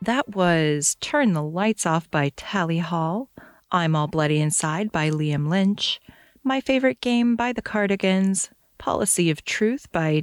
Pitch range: 165-220 Hz